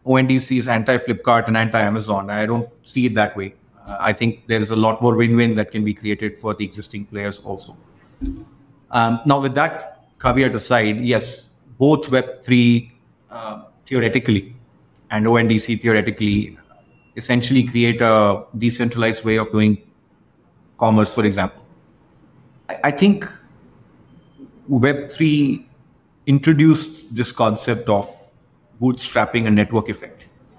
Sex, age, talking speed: male, 30-49, 130 wpm